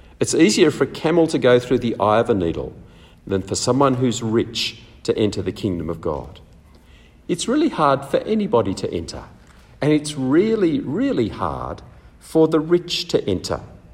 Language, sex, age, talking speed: English, male, 50-69, 175 wpm